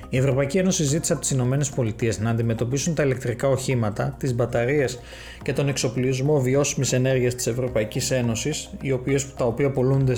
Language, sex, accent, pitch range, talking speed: Greek, male, native, 125-150 Hz, 165 wpm